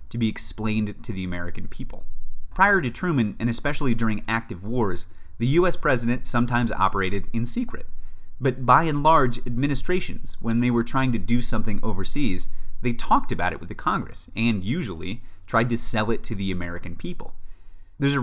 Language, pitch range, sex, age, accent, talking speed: English, 95-125 Hz, male, 30-49, American, 180 wpm